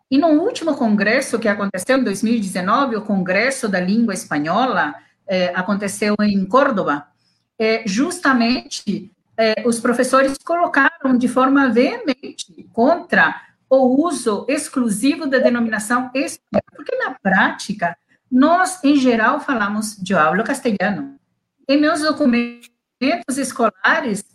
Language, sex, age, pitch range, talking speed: Portuguese, female, 50-69, 210-270 Hz, 115 wpm